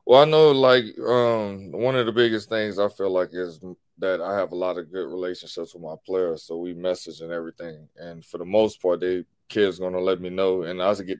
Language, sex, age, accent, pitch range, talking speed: English, male, 20-39, American, 95-115 Hz, 240 wpm